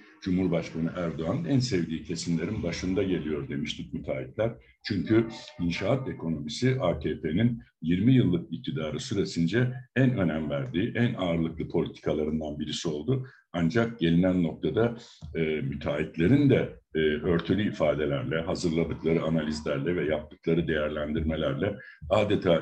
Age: 60-79